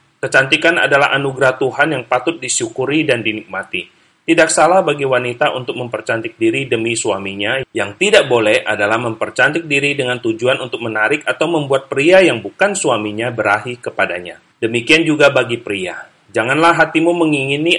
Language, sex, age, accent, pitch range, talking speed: Indonesian, male, 30-49, native, 115-155 Hz, 145 wpm